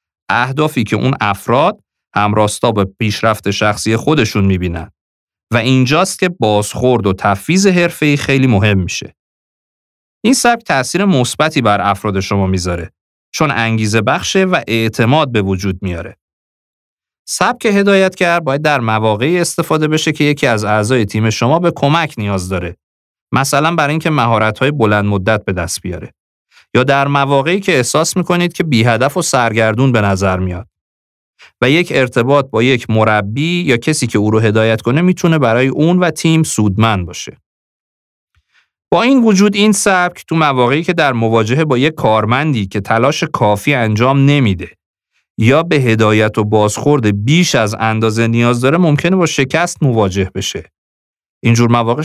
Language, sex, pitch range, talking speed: Persian, male, 105-155 Hz, 155 wpm